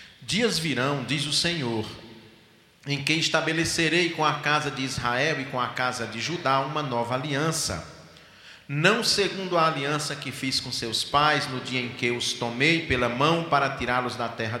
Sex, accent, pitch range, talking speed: male, Brazilian, 120-155 Hz, 175 wpm